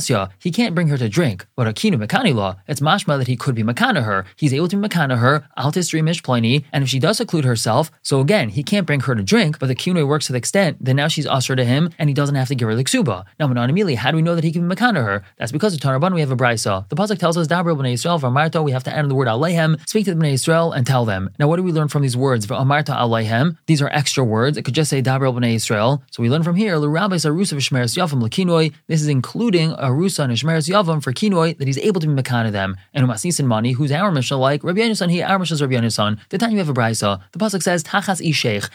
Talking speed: 270 wpm